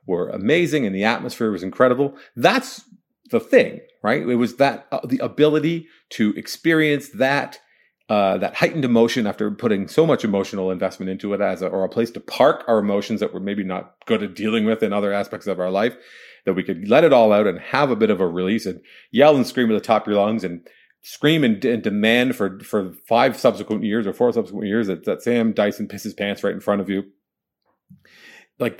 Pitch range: 100-150 Hz